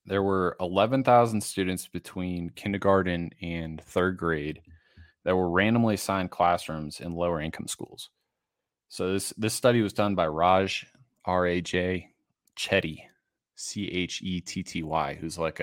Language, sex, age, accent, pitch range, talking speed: English, male, 20-39, American, 85-105 Hz, 145 wpm